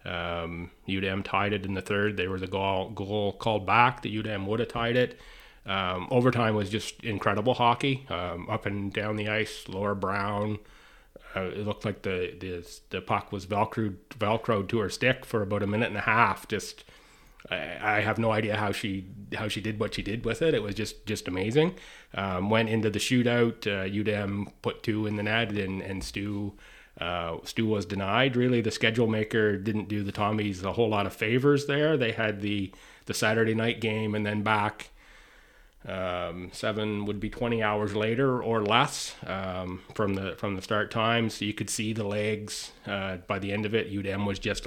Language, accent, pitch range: English, American, 100-110 Hz